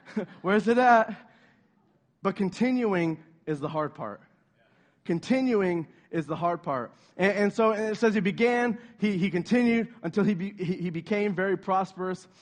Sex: male